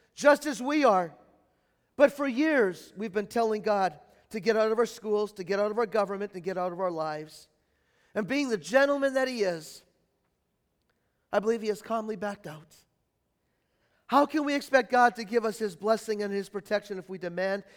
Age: 40-59